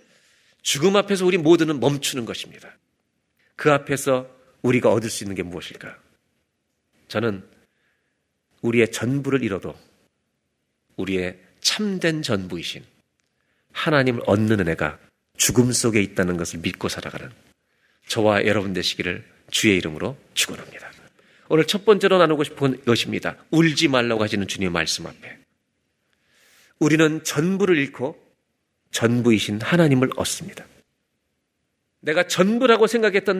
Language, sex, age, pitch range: Korean, male, 40-59, 105-155 Hz